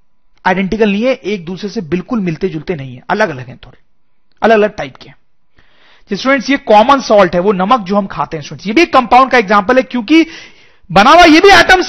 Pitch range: 180-260 Hz